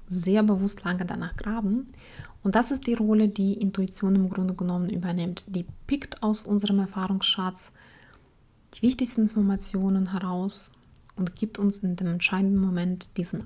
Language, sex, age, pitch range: German, female, 30-49, 190-215 Hz